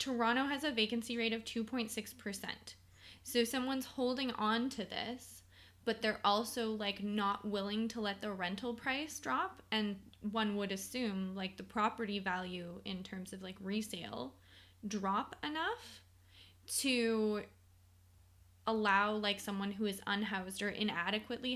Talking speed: 135 wpm